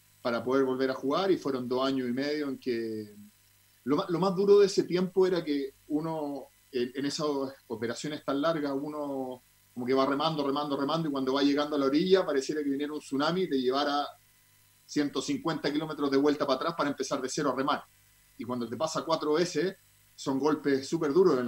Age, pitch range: 40-59, 115-150 Hz